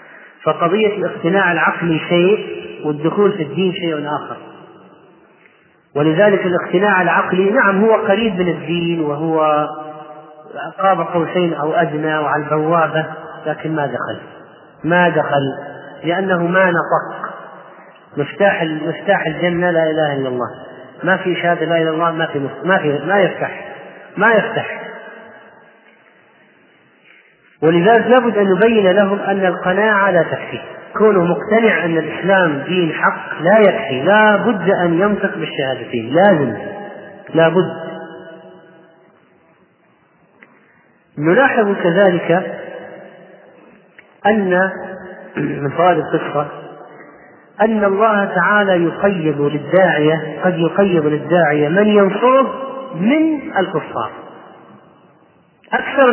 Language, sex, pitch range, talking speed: Arabic, male, 155-195 Hz, 105 wpm